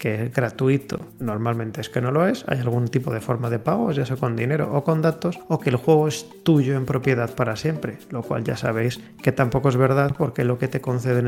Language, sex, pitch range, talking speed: Spanish, male, 120-145 Hz, 245 wpm